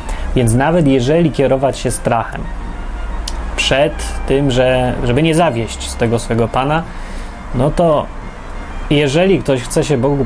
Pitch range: 115-145 Hz